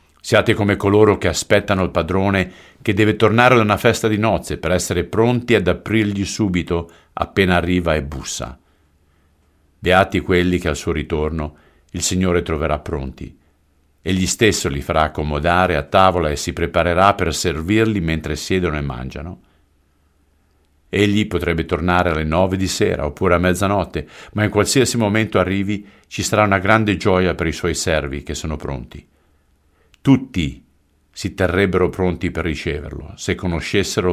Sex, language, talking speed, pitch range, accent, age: male, Italian, 150 wpm, 75-95 Hz, native, 50-69